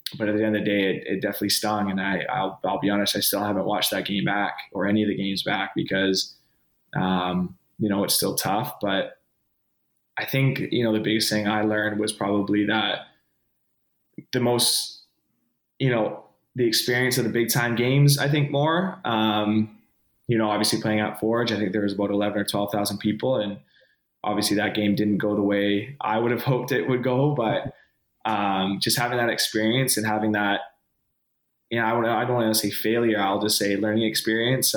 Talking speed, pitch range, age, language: 205 wpm, 100-110 Hz, 20-39, English